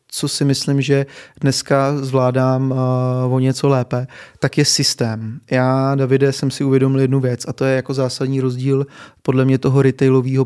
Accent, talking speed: native, 165 wpm